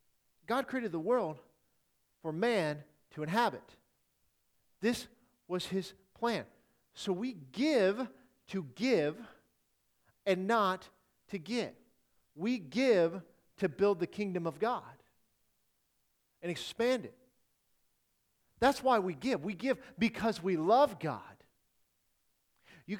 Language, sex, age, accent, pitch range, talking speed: English, male, 40-59, American, 165-220 Hz, 110 wpm